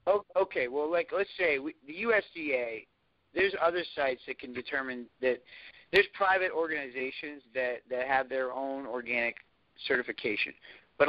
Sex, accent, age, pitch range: male, American, 50-69, 125-175 Hz